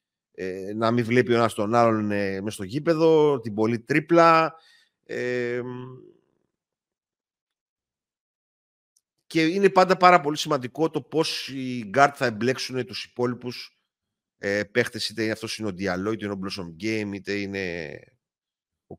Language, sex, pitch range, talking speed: Greek, male, 100-130 Hz, 135 wpm